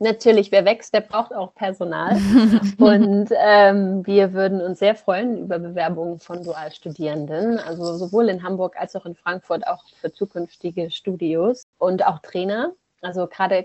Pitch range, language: 175-205 Hz, German